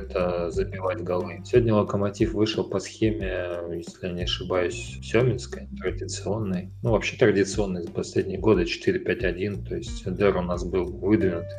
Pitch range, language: 90-105 Hz, Russian